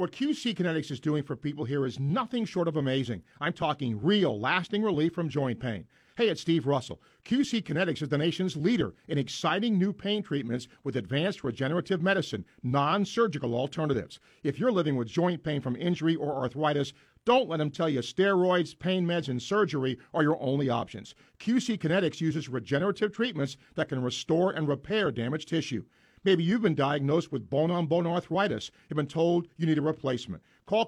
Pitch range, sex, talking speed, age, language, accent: 140-190 Hz, male, 180 wpm, 50-69, English, American